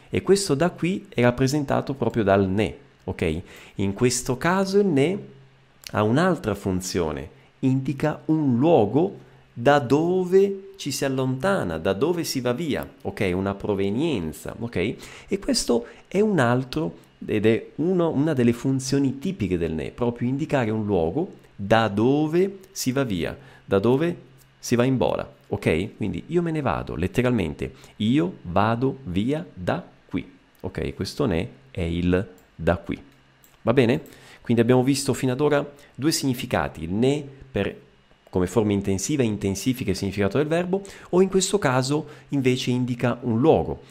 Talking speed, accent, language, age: 150 wpm, native, Italian, 40-59